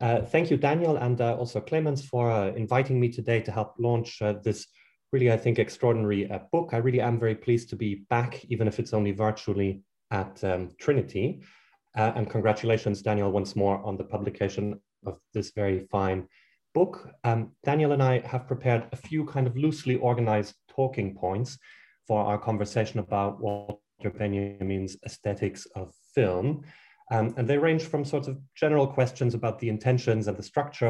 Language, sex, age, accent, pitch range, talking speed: English, male, 30-49, German, 100-125 Hz, 180 wpm